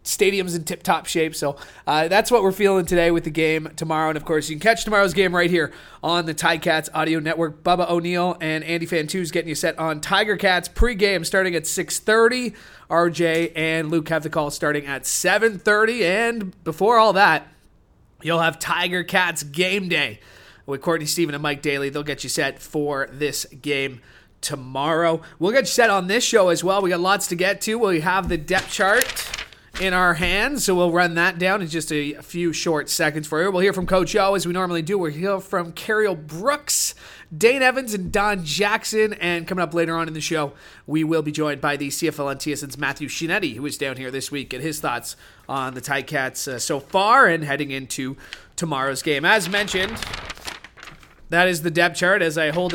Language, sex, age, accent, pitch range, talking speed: English, male, 30-49, American, 150-185 Hz, 210 wpm